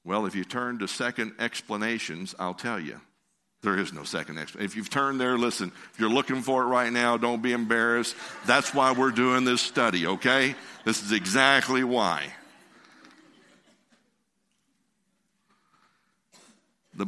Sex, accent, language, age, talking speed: male, American, English, 60-79, 150 wpm